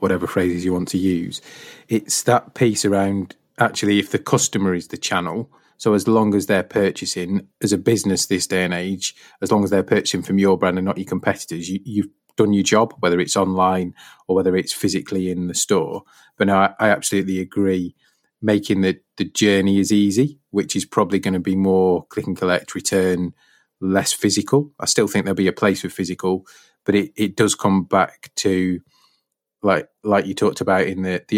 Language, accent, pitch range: English, British, 90-100 Hz